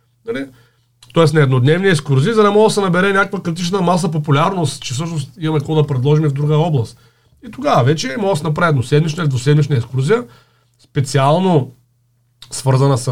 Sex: male